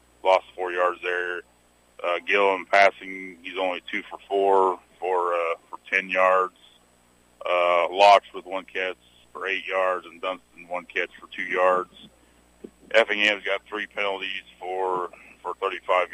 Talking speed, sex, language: 150 wpm, male, English